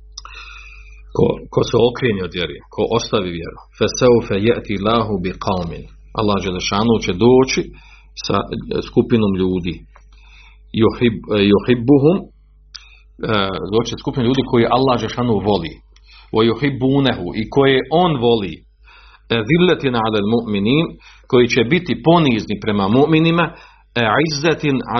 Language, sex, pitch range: Croatian, male, 100-130 Hz